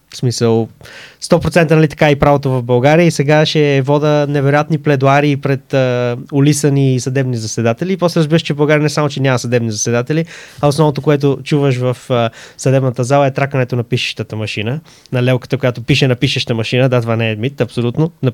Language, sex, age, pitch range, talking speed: Bulgarian, male, 20-39, 125-155 Hz, 190 wpm